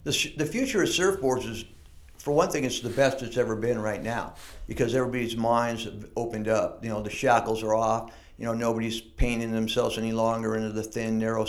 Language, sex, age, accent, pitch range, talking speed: English, male, 50-69, American, 110-125 Hz, 210 wpm